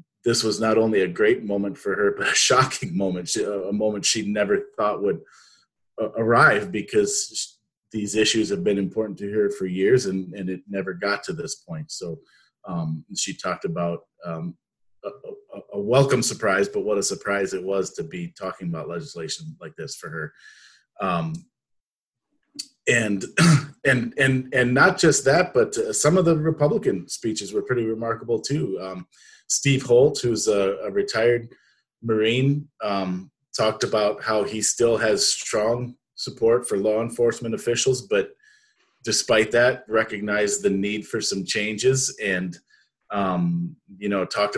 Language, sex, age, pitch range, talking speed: English, male, 30-49, 100-165 Hz, 155 wpm